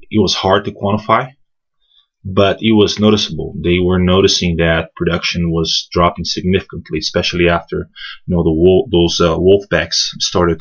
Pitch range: 85-105 Hz